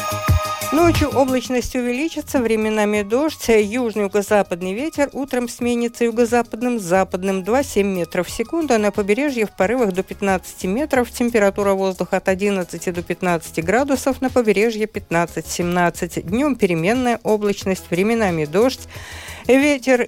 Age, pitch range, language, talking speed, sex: 50-69, 180-245 Hz, Russian, 115 wpm, female